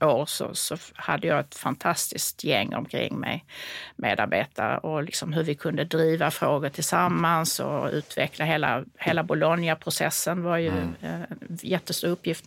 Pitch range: 155-180 Hz